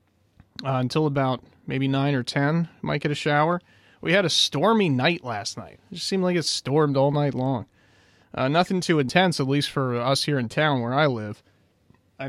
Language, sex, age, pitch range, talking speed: English, male, 30-49, 115-150 Hz, 205 wpm